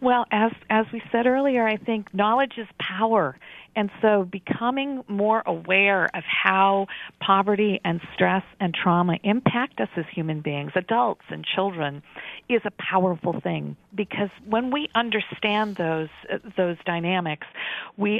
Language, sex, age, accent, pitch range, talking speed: English, female, 50-69, American, 170-215 Hz, 145 wpm